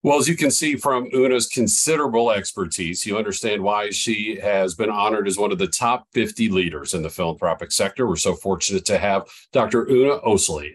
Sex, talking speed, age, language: male, 195 wpm, 50-69, English